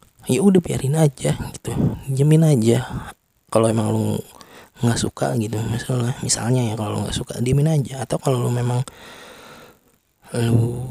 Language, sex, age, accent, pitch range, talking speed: Indonesian, male, 20-39, native, 110-135 Hz, 150 wpm